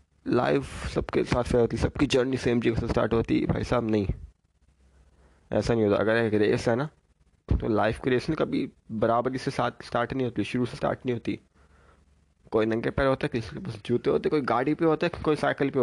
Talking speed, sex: 225 wpm, male